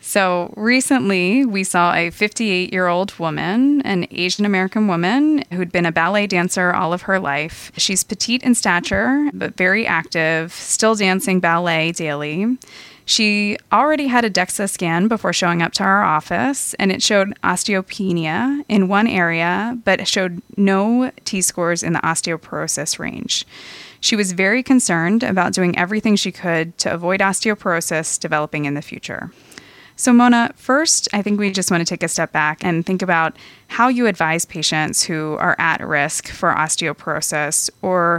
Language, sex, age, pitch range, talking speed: English, female, 20-39, 165-210 Hz, 155 wpm